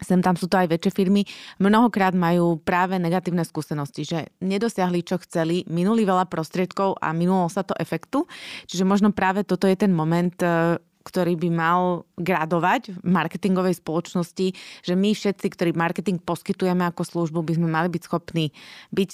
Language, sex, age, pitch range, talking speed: Slovak, female, 20-39, 170-200 Hz, 165 wpm